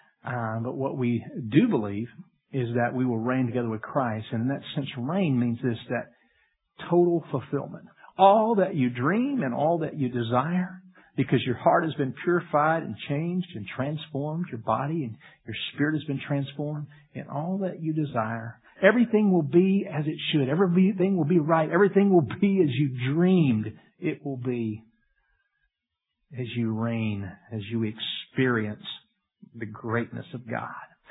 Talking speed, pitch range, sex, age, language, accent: 165 wpm, 125-180 Hz, male, 50-69, English, American